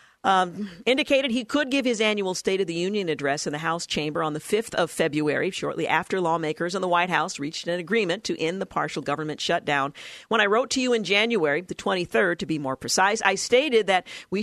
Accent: American